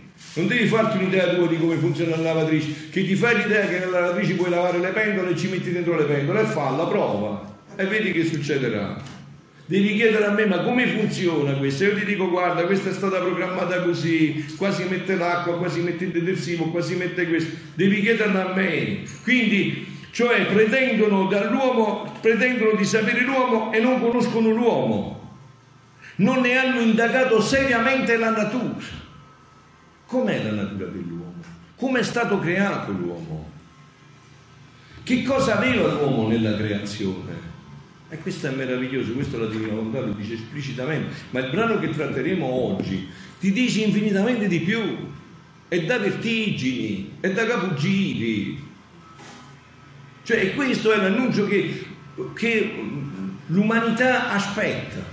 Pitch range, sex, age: 145-215 Hz, male, 50-69